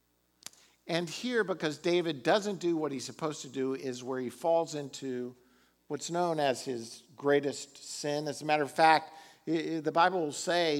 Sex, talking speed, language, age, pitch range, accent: male, 170 wpm, English, 50-69, 125-155 Hz, American